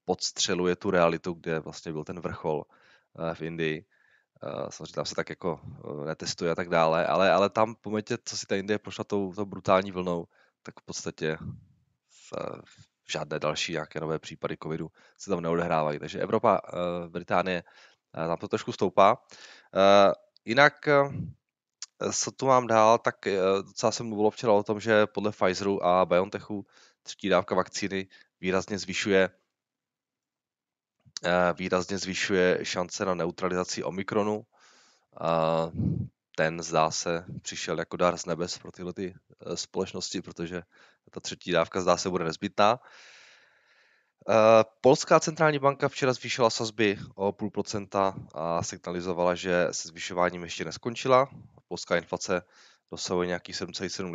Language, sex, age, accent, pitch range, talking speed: Czech, male, 20-39, native, 85-105 Hz, 135 wpm